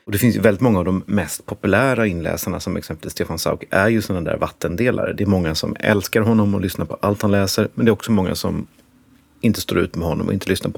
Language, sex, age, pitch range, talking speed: Swedish, male, 30-49, 95-115 Hz, 260 wpm